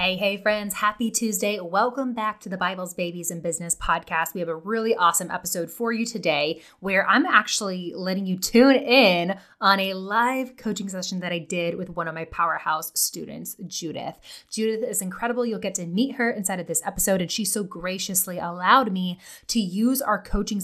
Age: 20-39